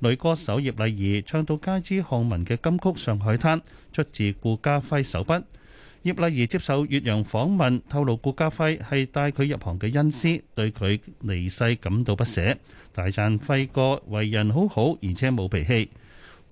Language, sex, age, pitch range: Chinese, male, 30-49, 105-145 Hz